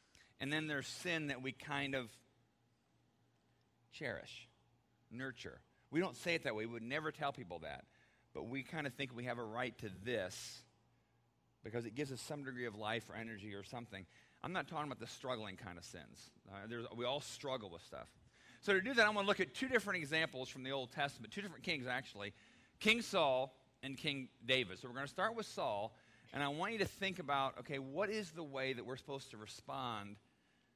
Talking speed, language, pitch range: 215 wpm, English, 115-150 Hz